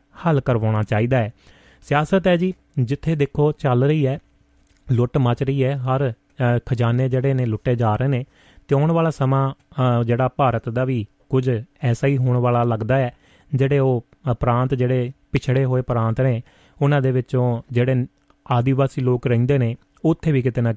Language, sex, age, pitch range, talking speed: Punjabi, male, 30-49, 120-140 Hz, 170 wpm